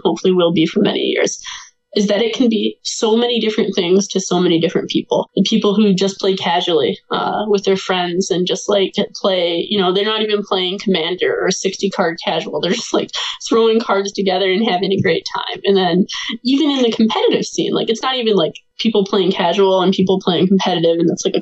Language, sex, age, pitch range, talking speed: English, female, 20-39, 185-215 Hz, 220 wpm